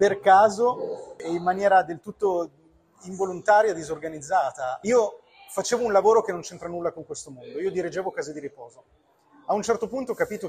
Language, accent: Italian, native